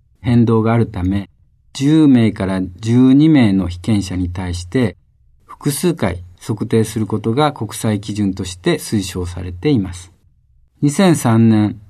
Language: Japanese